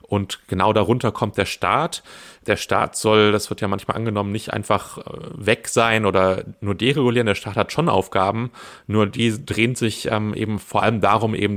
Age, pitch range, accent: 30-49, 95-110 Hz, German